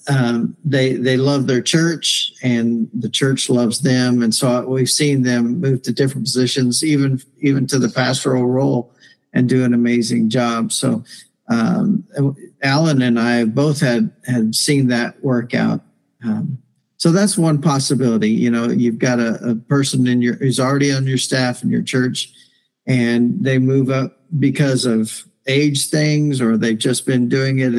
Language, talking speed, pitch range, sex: English, 170 wpm, 125-145 Hz, male